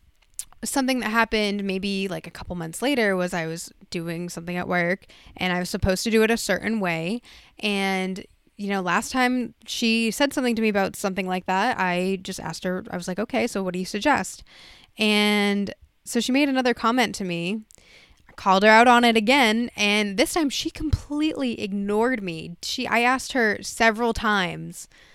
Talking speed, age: 195 wpm, 10-29